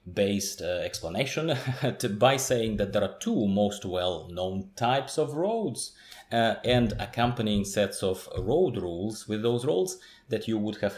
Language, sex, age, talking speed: English, male, 30-49, 160 wpm